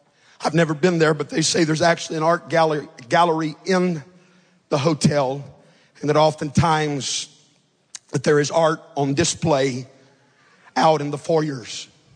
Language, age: English, 50-69